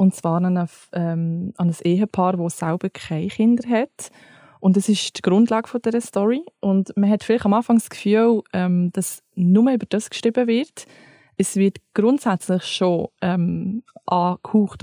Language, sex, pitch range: German, female, 175-205 Hz